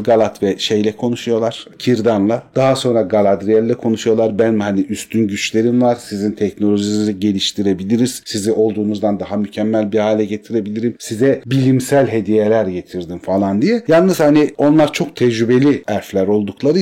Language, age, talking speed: Turkish, 40-59, 130 wpm